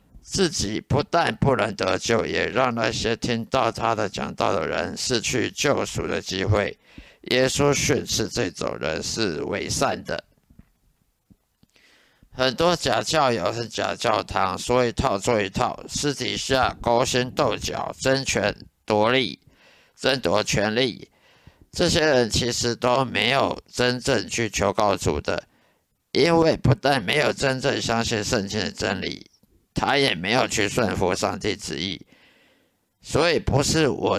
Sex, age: male, 50-69